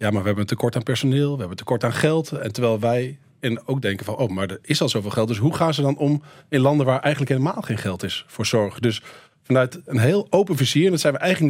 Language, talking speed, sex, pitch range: Dutch, 285 wpm, male, 120-145 Hz